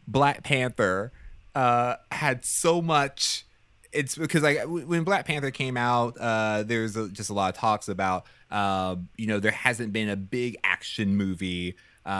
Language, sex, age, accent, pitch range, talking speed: English, male, 30-49, American, 110-160 Hz, 155 wpm